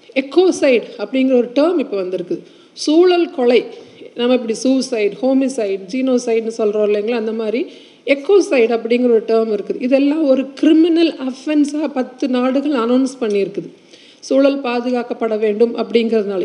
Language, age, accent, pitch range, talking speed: Tamil, 50-69, native, 215-275 Hz, 125 wpm